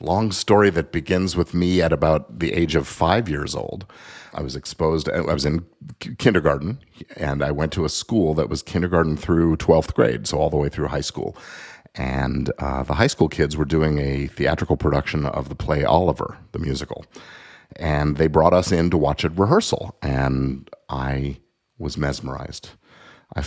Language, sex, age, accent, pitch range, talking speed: English, male, 50-69, American, 70-85 Hz, 180 wpm